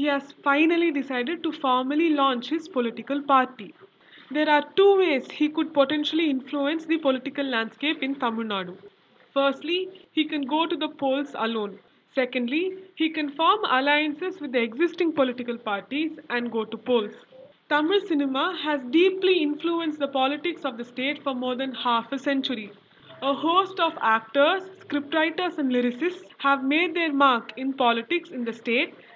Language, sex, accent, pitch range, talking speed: English, female, Indian, 250-320 Hz, 160 wpm